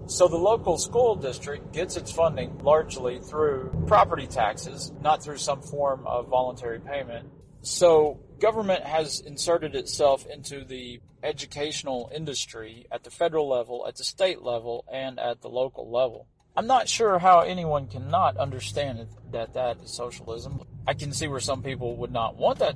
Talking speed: 165 wpm